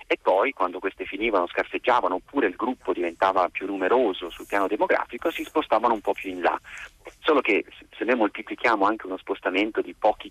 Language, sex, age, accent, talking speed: Italian, male, 30-49, native, 185 wpm